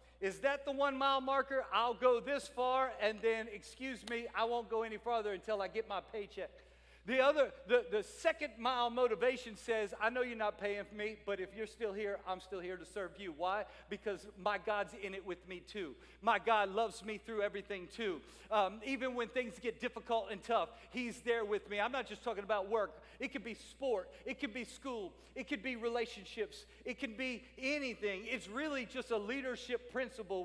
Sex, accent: male, American